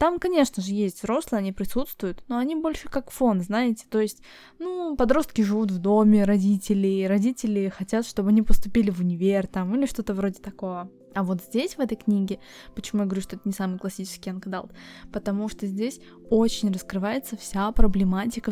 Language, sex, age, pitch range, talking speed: Russian, female, 20-39, 195-225 Hz, 180 wpm